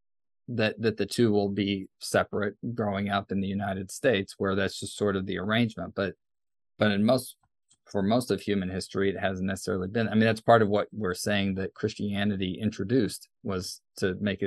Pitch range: 100-130 Hz